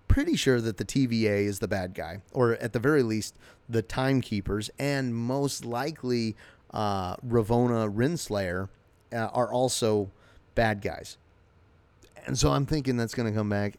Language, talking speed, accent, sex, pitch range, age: English, 155 wpm, American, male, 110-140 Hz, 30-49